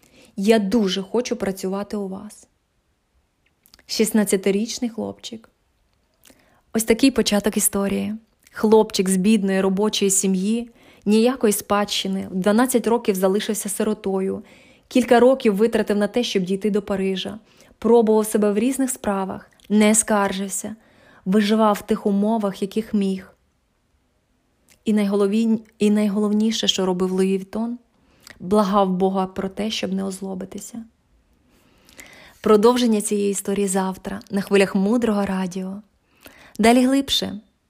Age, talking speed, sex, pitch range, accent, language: 20-39, 105 wpm, female, 195-220 Hz, native, Ukrainian